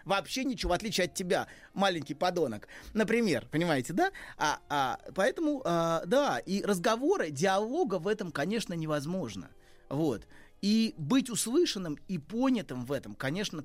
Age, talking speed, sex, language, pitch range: 30-49, 130 wpm, male, Russian, 150-215 Hz